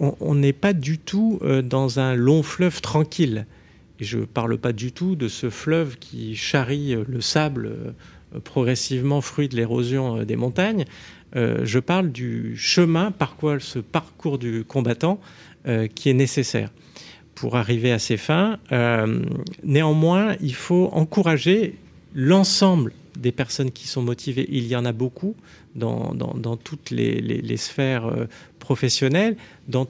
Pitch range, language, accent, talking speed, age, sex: 120-165 Hz, French, French, 145 wpm, 50-69, male